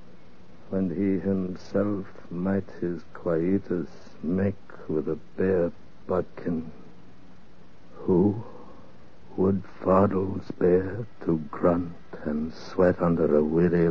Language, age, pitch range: English, 60-79, 80-95 Hz